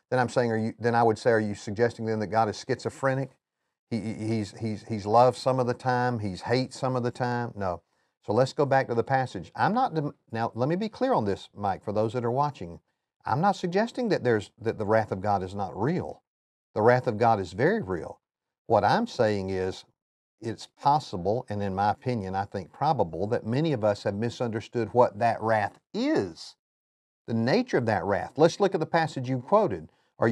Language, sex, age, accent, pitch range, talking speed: English, male, 50-69, American, 105-135 Hz, 215 wpm